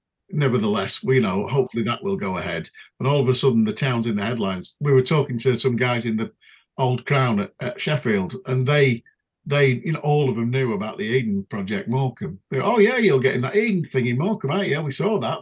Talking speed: 235 wpm